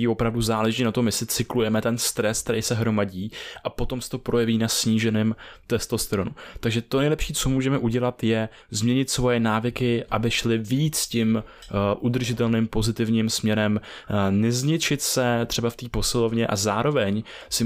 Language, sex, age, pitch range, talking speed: Czech, male, 20-39, 105-120 Hz, 155 wpm